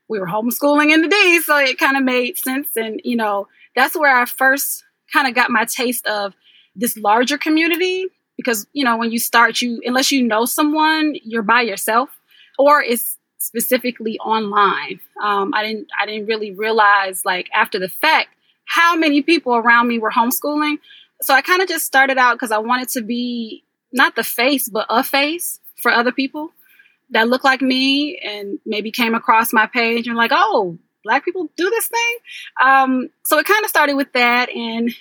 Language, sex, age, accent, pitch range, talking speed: English, female, 20-39, American, 225-290 Hz, 190 wpm